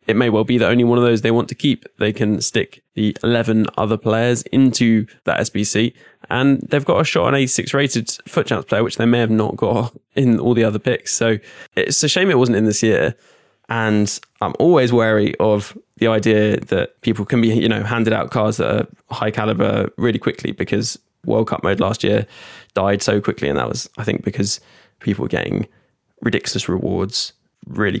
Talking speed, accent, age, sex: 210 wpm, British, 10-29, male